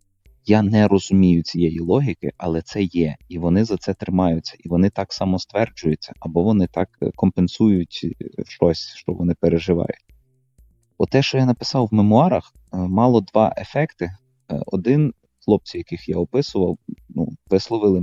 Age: 20-39